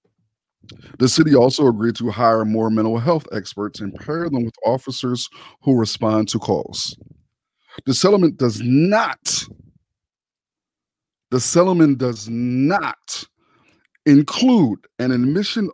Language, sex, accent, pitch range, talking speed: English, male, American, 115-170 Hz, 115 wpm